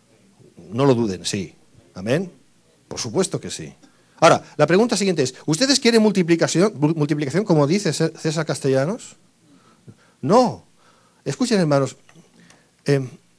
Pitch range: 130-175 Hz